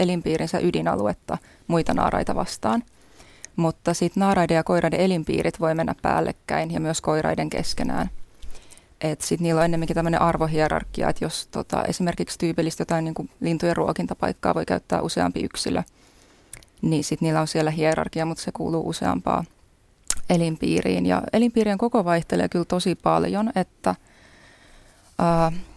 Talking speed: 135 wpm